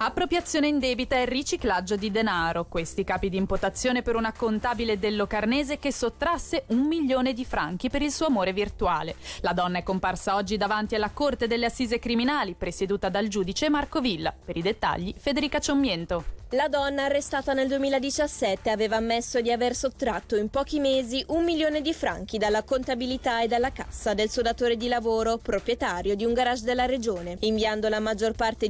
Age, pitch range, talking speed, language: 20-39, 210-275 Hz, 180 wpm, Italian